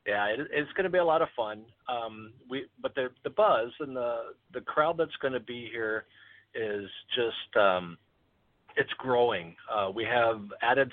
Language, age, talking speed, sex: English, 40-59, 175 wpm, male